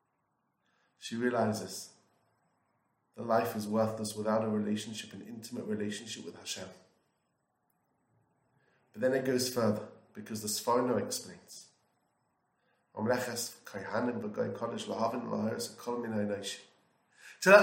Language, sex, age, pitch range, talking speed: English, male, 30-49, 110-150 Hz, 85 wpm